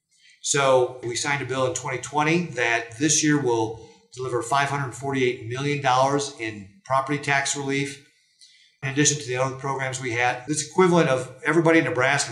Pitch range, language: 130-160 Hz, English